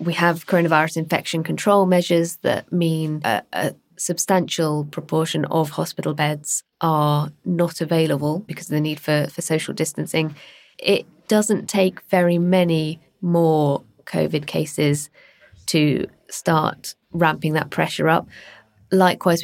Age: 20-39